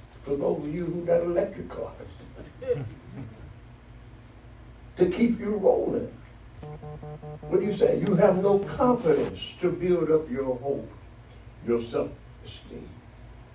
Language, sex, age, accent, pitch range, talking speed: English, male, 60-79, American, 110-135 Hz, 120 wpm